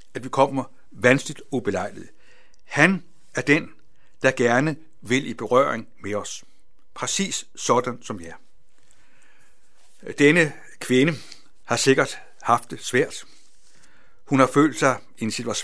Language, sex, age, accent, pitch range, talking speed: Danish, male, 60-79, native, 125-155 Hz, 125 wpm